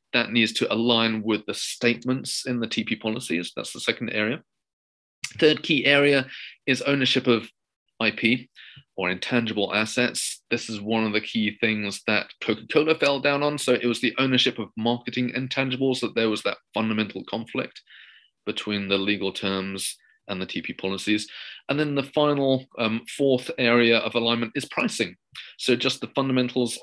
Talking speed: 165 wpm